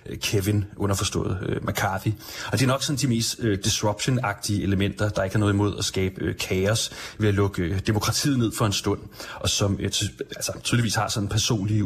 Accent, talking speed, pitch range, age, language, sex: native, 175 wpm, 100-125 Hz, 30-49, Danish, male